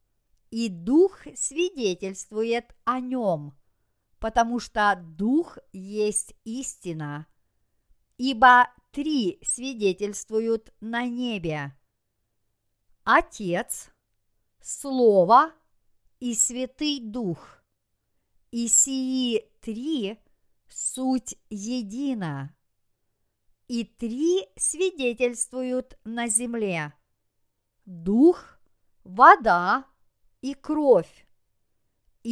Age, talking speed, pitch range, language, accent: 50-69, 65 wpm, 170-255 Hz, Russian, native